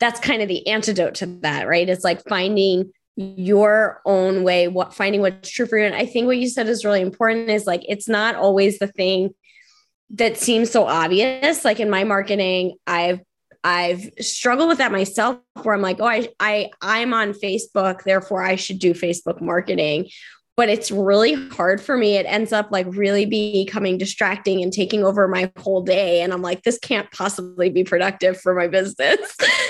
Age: 20-39